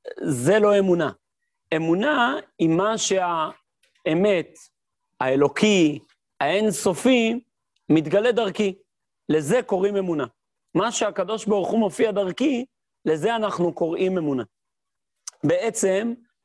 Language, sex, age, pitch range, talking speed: Hebrew, male, 40-59, 160-215 Hz, 95 wpm